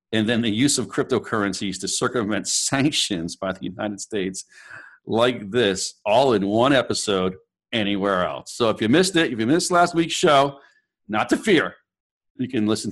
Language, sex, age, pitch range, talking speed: English, male, 50-69, 110-160 Hz, 175 wpm